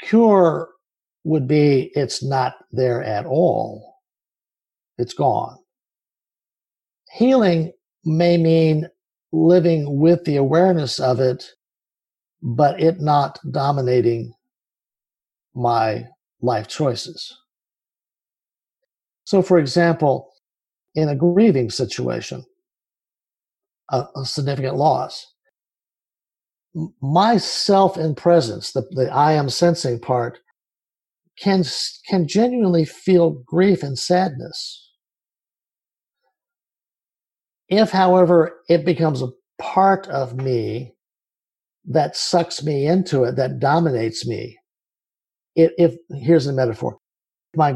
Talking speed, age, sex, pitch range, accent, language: 90 wpm, 50-69, male, 130-180 Hz, American, English